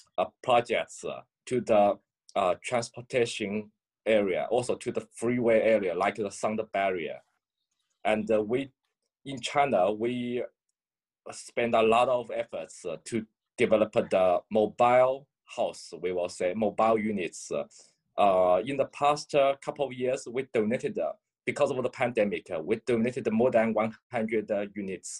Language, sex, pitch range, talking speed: English, male, 110-130 Hz, 145 wpm